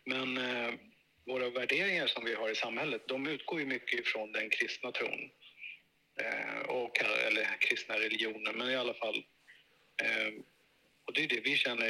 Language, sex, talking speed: Swedish, male, 165 wpm